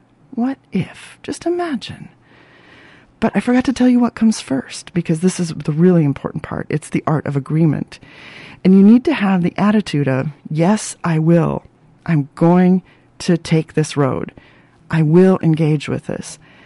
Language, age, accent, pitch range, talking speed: English, 40-59, American, 150-200 Hz, 170 wpm